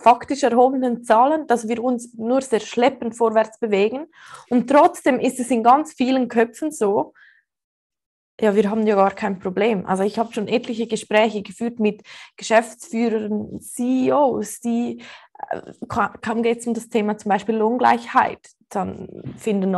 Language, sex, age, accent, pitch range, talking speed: German, female, 20-39, Austrian, 210-255 Hz, 145 wpm